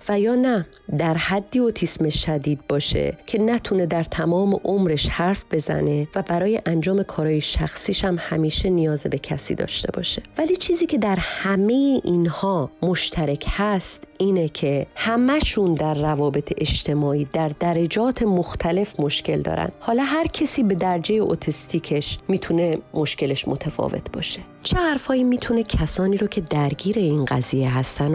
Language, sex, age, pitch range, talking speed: Persian, female, 30-49, 145-205 Hz, 140 wpm